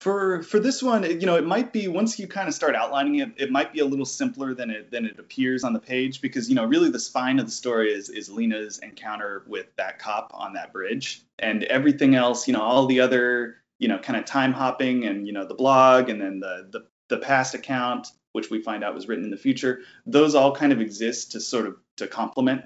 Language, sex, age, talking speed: English, male, 20-39, 250 wpm